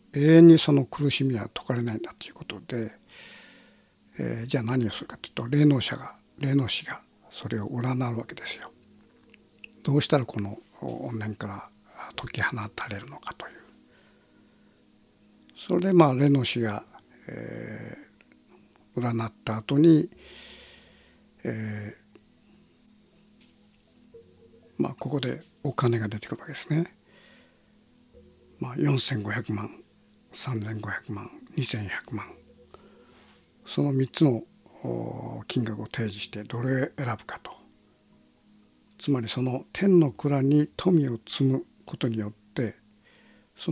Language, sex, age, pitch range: Japanese, male, 60-79, 110-145 Hz